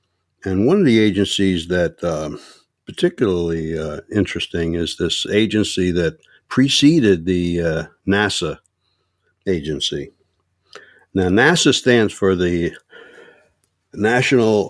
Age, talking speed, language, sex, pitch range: 60-79, 100 wpm, English, male, 85-100 Hz